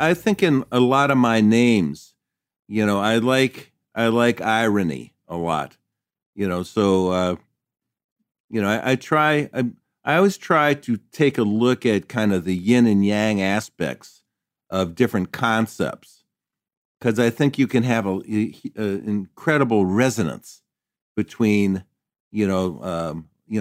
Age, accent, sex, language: 50-69, American, male, English